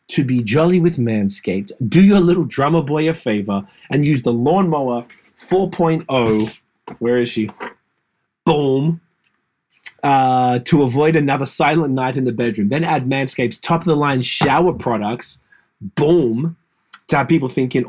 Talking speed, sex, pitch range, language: 140 wpm, male, 120-155 Hz, English